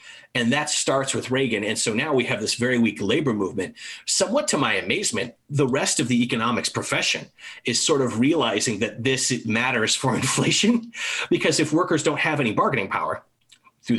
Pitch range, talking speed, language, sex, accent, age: 115-155 Hz, 185 wpm, English, male, American, 30-49